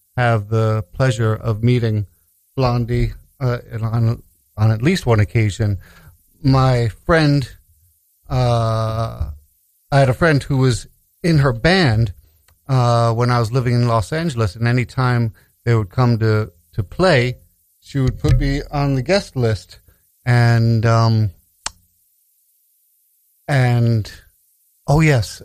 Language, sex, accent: English, male, American